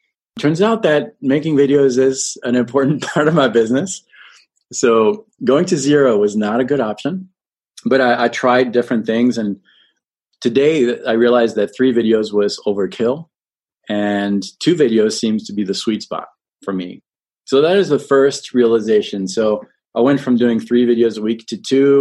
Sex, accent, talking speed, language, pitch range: male, American, 175 wpm, English, 105-140 Hz